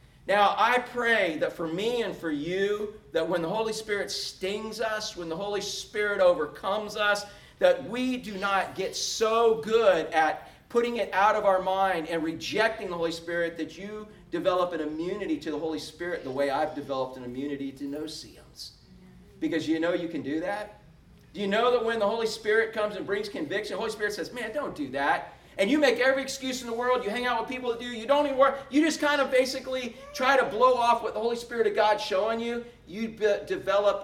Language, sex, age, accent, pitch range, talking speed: English, male, 40-59, American, 170-235 Hz, 220 wpm